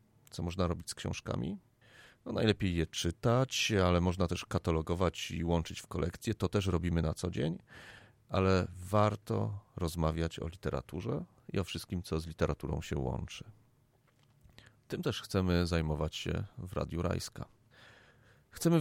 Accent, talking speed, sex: native, 140 wpm, male